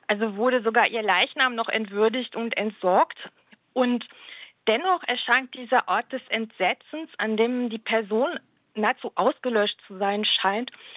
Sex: female